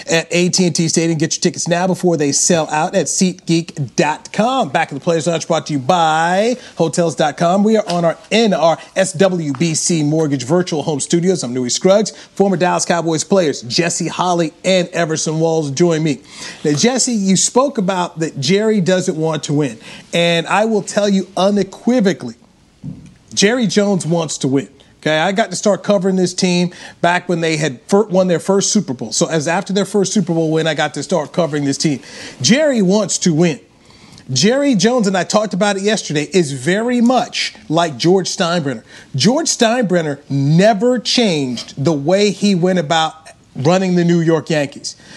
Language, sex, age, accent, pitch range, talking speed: English, male, 40-59, American, 160-195 Hz, 175 wpm